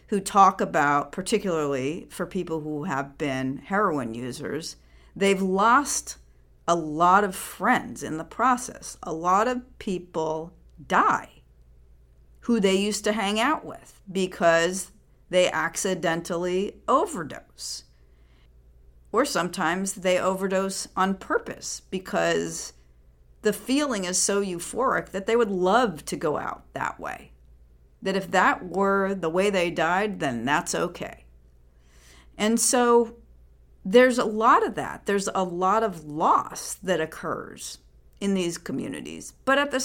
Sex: female